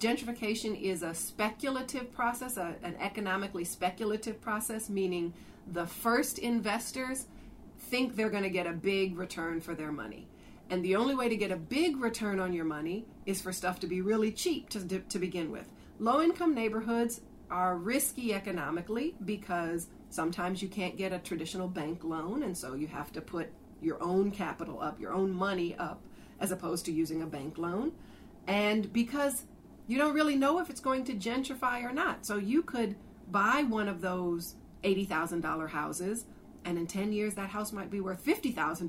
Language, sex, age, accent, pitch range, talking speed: English, female, 40-59, American, 180-235 Hz, 175 wpm